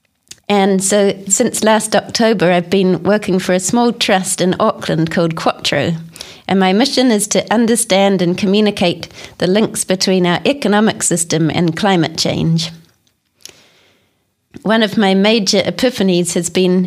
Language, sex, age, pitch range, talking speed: English, female, 30-49, 175-210 Hz, 140 wpm